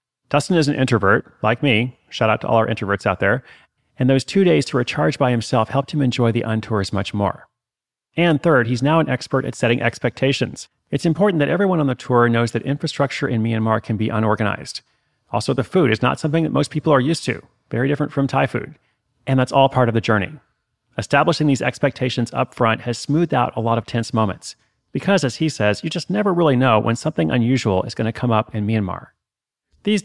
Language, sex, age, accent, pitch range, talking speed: English, male, 30-49, American, 115-150 Hz, 220 wpm